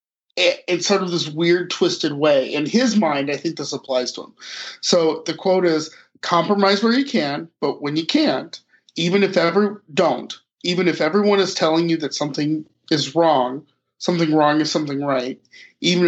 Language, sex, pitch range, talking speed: English, male, 140-185 Hz, 180 wpm